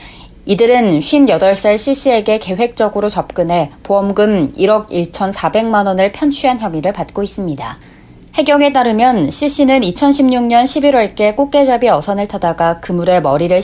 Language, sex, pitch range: Korean, female, 180-240 Hz